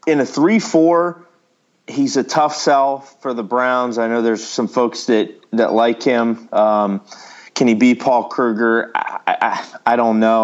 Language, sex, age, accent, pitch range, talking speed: English, male, 30-49, American, 110-130 Hz, 180 wpm